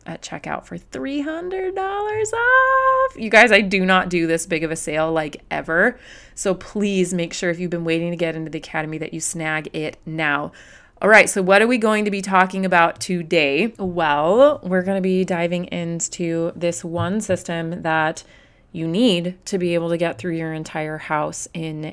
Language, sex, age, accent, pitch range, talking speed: English, female, 30-49, American, 160-200 Hz, 190 wpm